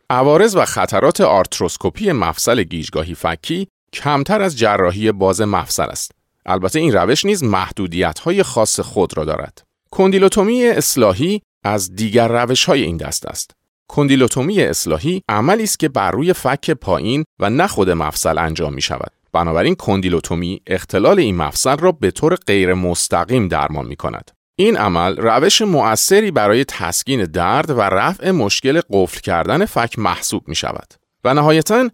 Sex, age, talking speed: male, 40-59, 140 wpm